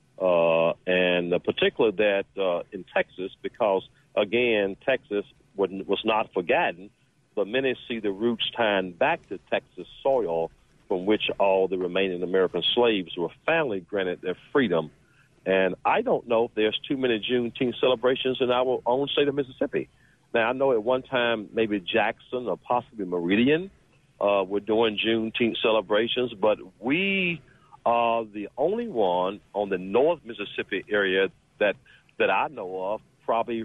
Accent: American